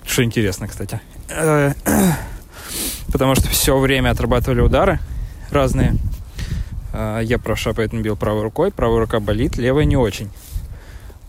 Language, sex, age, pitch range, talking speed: Russian, male, 20-39, 100-125 Hz, 120 wpm